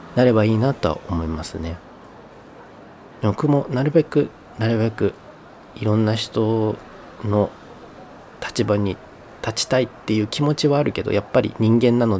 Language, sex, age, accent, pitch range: Japanese, male, 40-59, native, 90-115 Hz